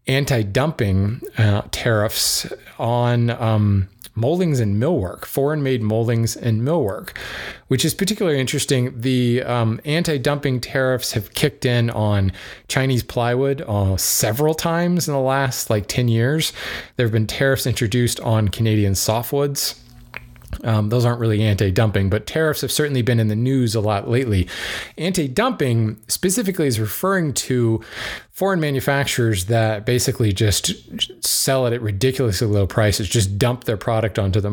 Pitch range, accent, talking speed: 105-130 Hz, American, 140 wpm